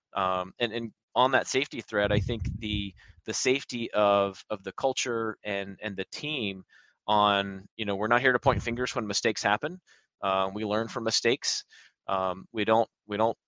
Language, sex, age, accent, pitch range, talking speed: English, male, 30-49, American, 100-120 Hz, 185 wpm